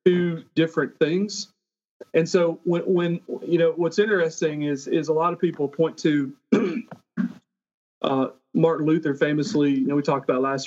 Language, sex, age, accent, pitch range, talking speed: English, male, 40-59, American, 135-175 Hz, 165 wpm